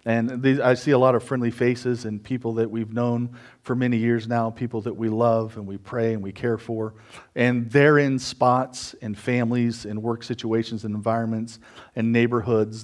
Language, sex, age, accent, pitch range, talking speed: English, male, 40-59, American, 115-140 Hz, 190 wpm